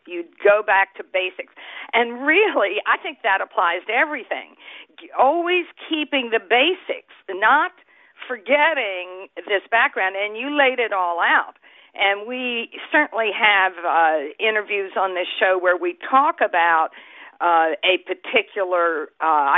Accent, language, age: American, English, 50-69